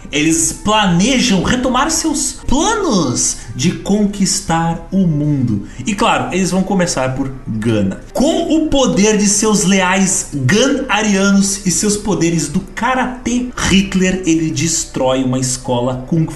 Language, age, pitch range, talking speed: Portuguese, 30-49, 125-210 Hz, 125 wpm